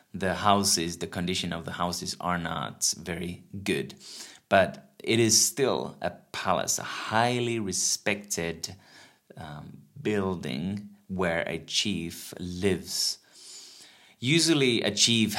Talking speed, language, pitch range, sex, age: 115 wpm, Finnish, 85-100 Hz, male, 20-39